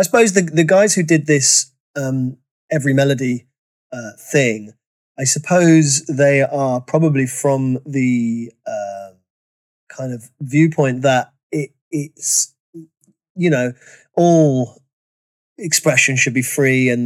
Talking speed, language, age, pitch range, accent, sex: 125 wpm, English, 30-49, 130-165 Hz, British, male